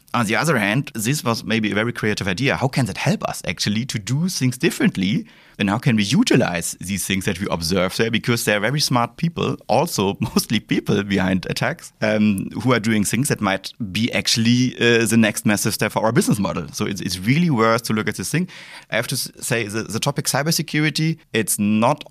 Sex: male